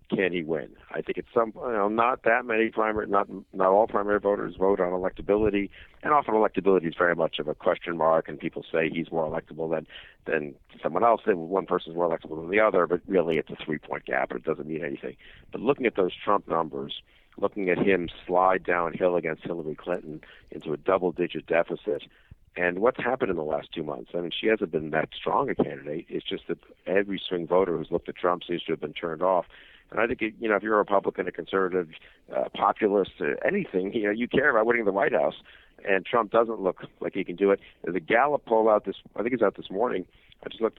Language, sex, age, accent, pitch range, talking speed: English, male, 50-69, American, 85-105 Hz, 235 wpm